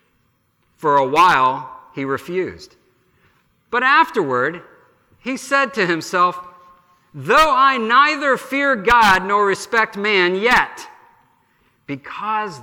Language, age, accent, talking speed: English, 50-69, American, 100 wpm